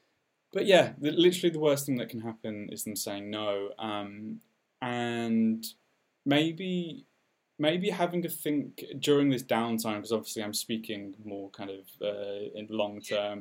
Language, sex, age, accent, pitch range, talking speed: English, male, 10-29, British, 110-140 Hz, 155 wpm